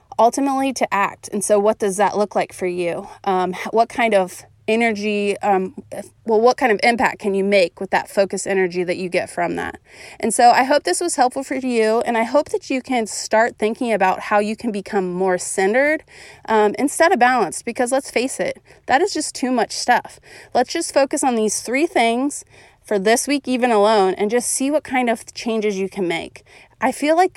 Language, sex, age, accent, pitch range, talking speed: English, female, 30-49, American, 205-255 Hz, 215 wpm